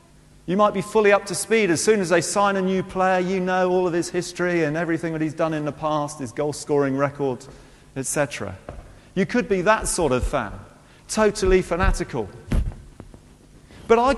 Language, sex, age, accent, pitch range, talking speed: English, male, 40-59, British, 130-190 Hz, 190 wpm